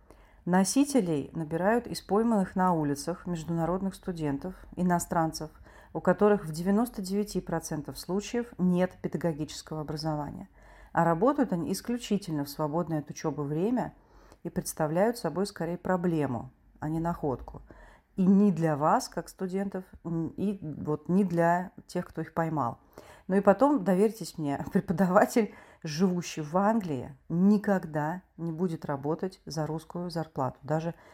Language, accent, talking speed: Russian, native, 125 wpm